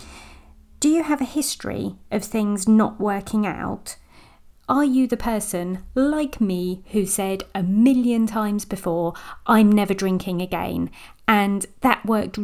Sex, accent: female, British